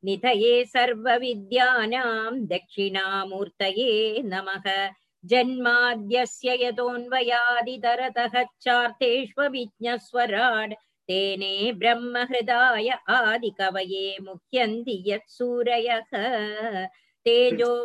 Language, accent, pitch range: Tamil, native, 215-245 Hz